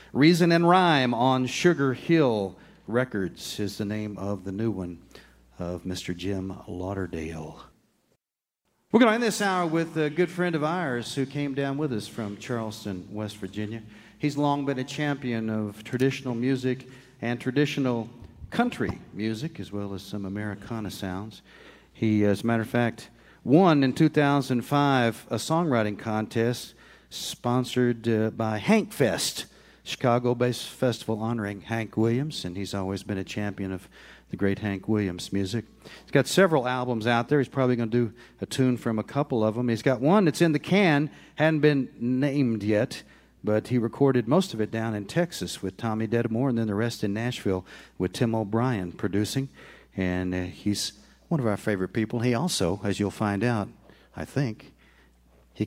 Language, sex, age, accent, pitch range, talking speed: English, male, 50-69, American, 100-140 Hz, 170 wpm